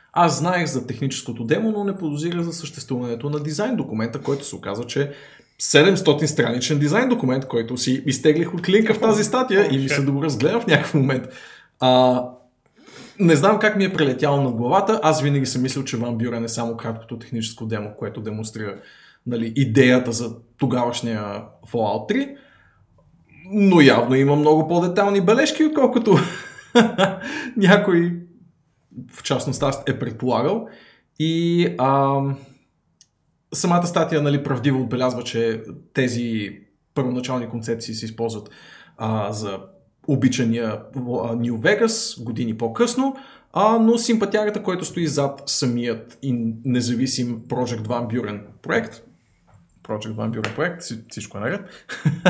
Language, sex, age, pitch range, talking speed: Bulgarian, male, 20-39, 120-175 Hz, 135 wpm